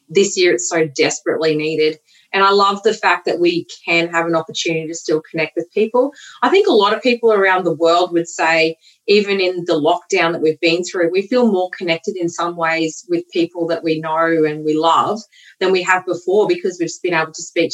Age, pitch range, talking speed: 30-49, 160-195 Hz, 225 wpm